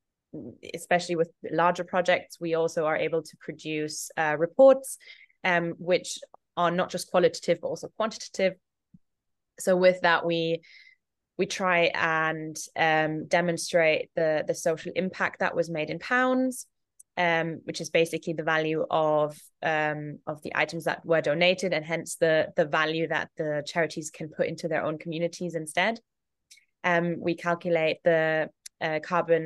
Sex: female